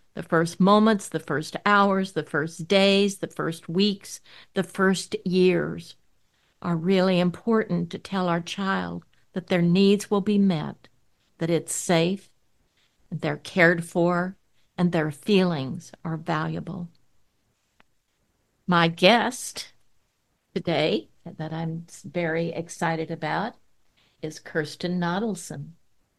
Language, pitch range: English, 165-200 Hz